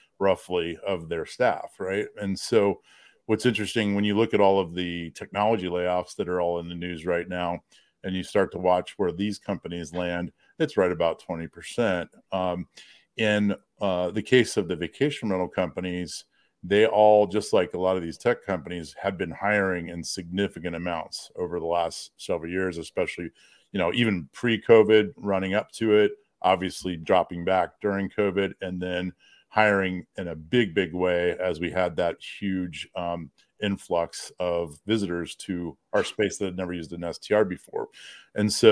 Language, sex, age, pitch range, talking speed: English, male, 40-59, 85-105 Hz, 175 wpm